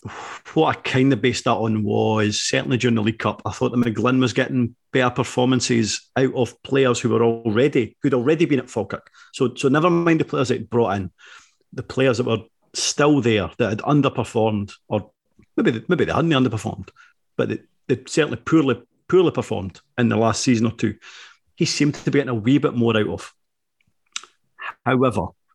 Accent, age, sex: British, 40-59, male